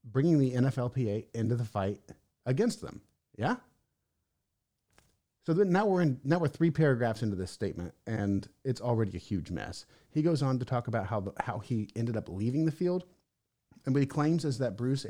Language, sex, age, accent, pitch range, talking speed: English, male, 30-49, American, 100-130 Hz, 185 wpm